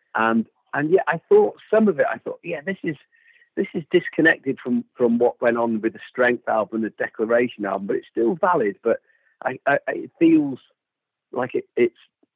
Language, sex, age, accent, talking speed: English, male, 50-69, British, 200 wpm